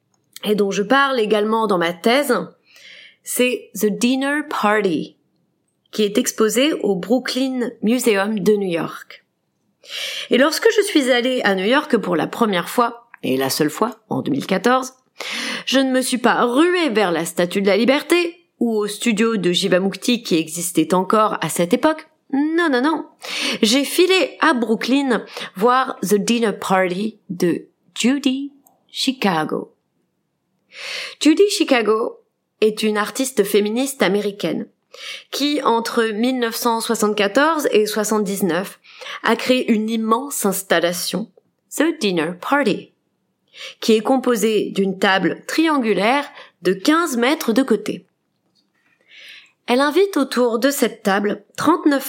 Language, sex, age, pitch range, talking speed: French, female, 30-49, 205-265 Hz, 130 wpm